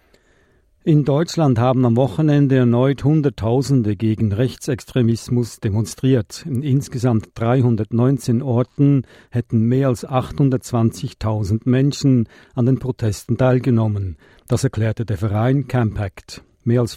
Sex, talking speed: male, 105 wpm